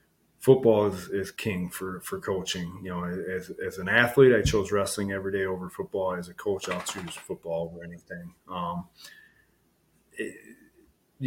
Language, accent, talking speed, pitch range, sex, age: English, American, 160 wpm, 95-115 Hz, male, 30-49